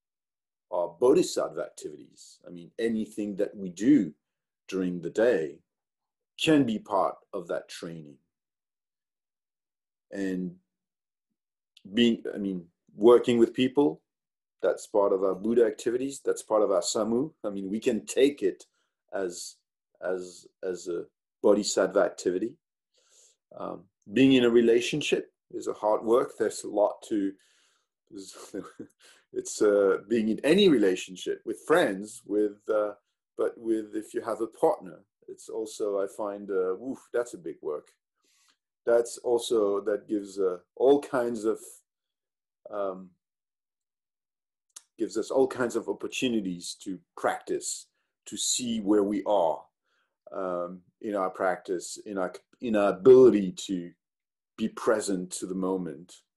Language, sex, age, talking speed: English, male, 40-59, 130 wpm